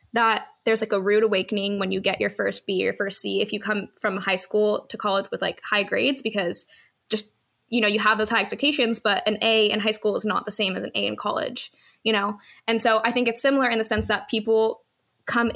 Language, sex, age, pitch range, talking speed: English, female, 10-29, 200-230 Hz, 250 wpm